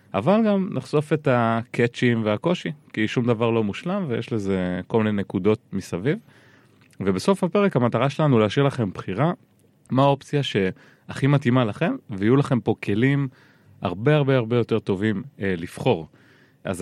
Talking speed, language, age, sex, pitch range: 145 wpm, Hebrew, 30-49, male, 100-135 Hz